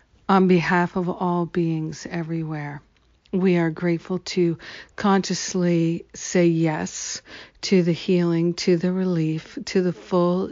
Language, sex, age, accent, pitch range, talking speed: English, female, 50-69, American, 165-180 Hz, 125 wpm